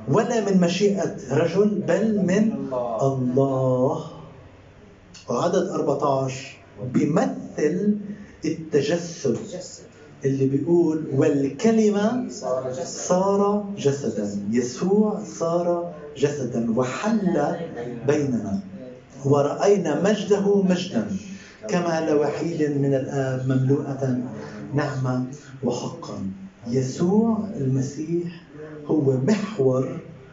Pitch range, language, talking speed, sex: 130-185 Hz, Arabic, 70 wpm, male